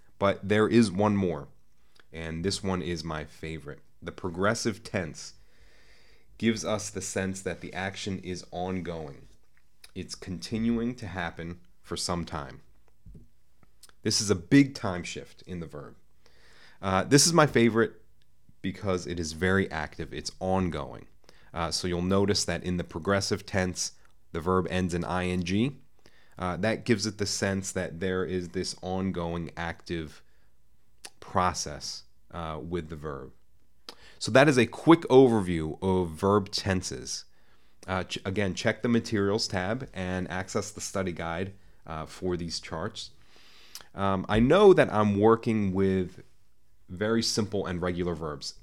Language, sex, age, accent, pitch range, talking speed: English, male, 30-49, American, 85-105 Hz, 145 wpm